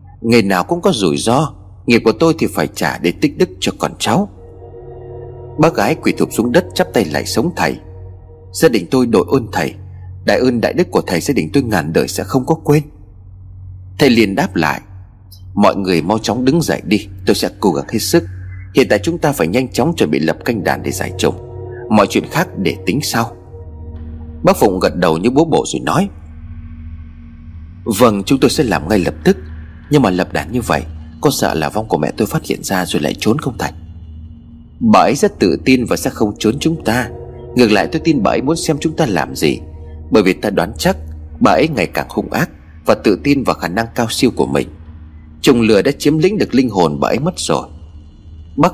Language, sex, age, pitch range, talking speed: Vietnamese, male, 30-49, 80-120 Hz, 225 wpm